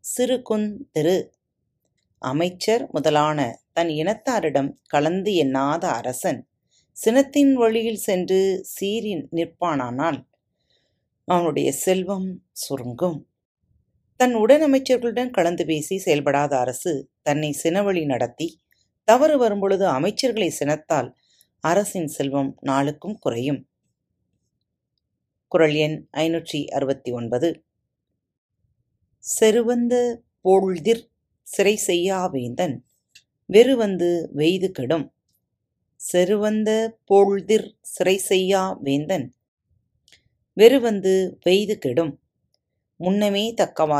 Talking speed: 75 wpm